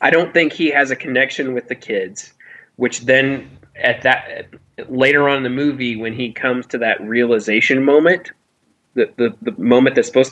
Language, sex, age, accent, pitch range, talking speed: English, male, 20-39, American, 115-135 Hz, 180 wpm